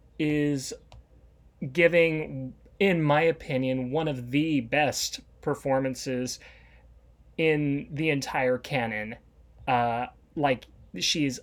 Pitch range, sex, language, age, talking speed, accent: 130-170 Hz, male, English, 30-49, 90 wpm, American